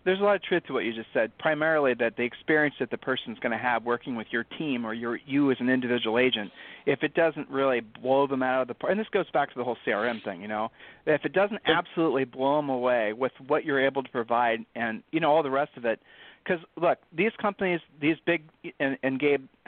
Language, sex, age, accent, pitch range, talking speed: English, male, 40-59, American, 130-160 Hz, 250 wpm